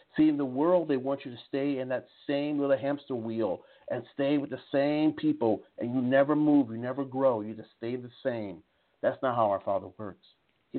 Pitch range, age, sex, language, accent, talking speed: 110-145 Hz, 50-69, male, English, American, 220 wpm